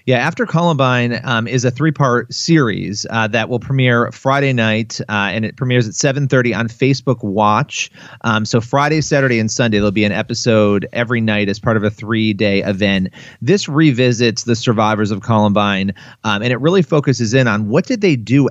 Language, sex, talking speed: English, male, 190 wpm